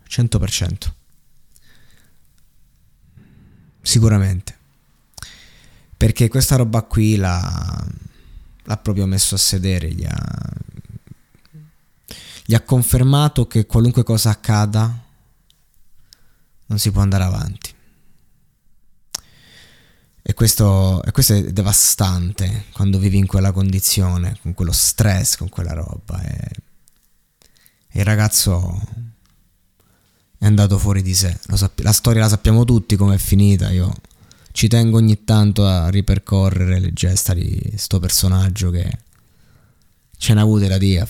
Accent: native